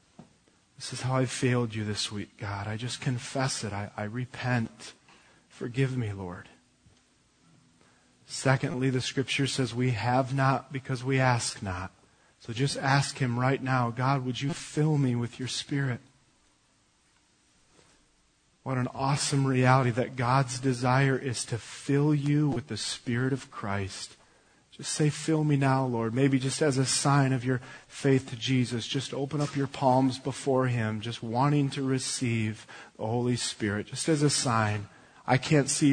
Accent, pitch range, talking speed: American, 115-140 Hz, 160 wpm